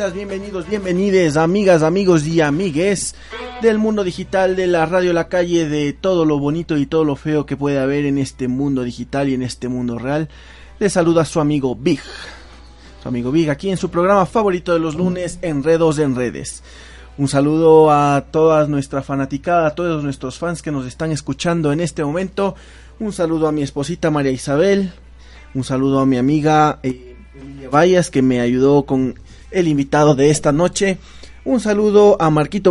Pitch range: 135-170 Hz